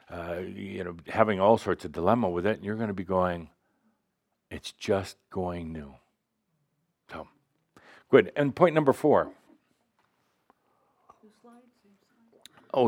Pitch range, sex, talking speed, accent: 90-115 Hz, male, 120 wpm, American